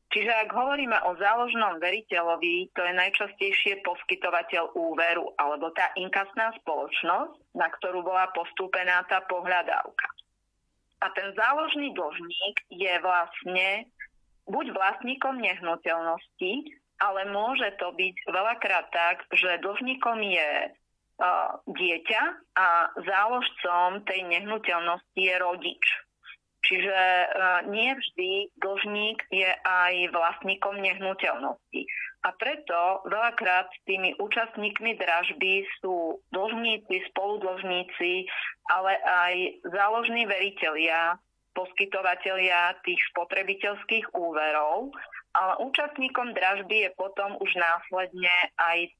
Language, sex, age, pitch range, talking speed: Slovak, female, 30-49, 175-215 Hz, 95 wpm